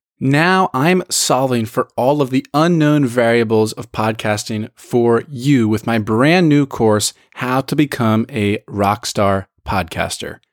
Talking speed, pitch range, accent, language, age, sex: 135 wpm, 110-150 Hz, American, English, 20-39, male